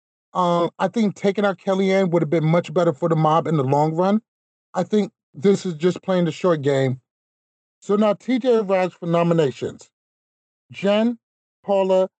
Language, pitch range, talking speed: English, 150-195 Hz, 170 wpm